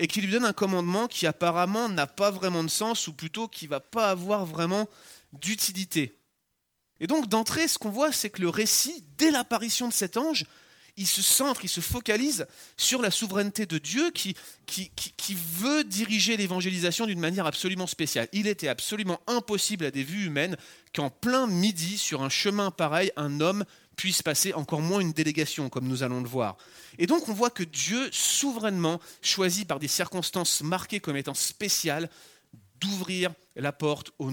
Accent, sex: French, male